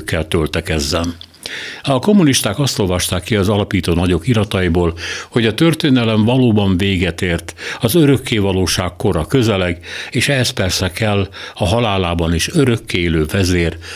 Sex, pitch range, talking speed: male, 90-115 Hz, 140 wpm